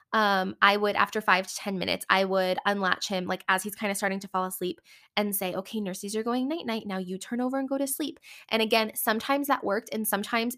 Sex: female